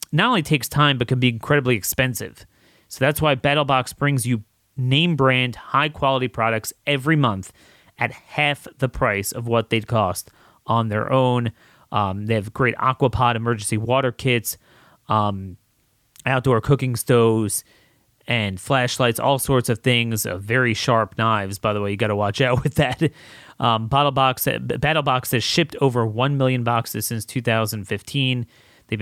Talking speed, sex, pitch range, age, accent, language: 155 wpm, male, 110-135 Hz, 30-49, American, English